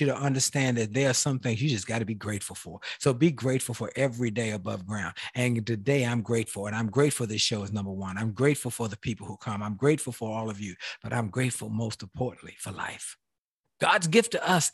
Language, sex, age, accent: English, male, 50-69, American